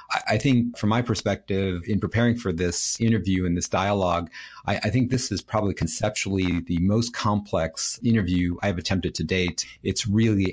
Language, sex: English, male